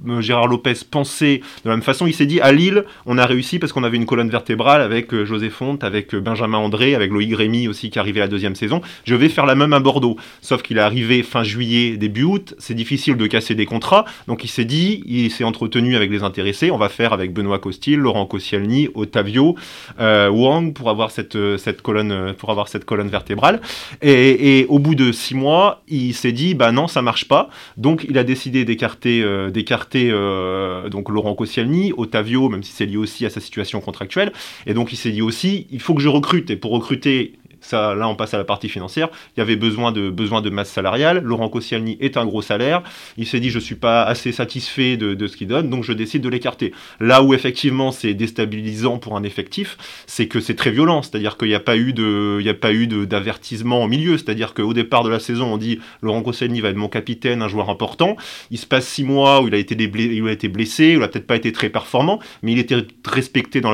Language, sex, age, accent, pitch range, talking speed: French, male, 30-49, French, 105-130 Hz, 235 wpm